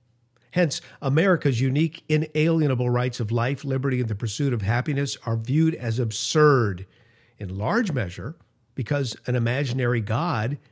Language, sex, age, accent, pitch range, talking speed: English, male, 50-69, American, 120-155 Hz, 135 wpm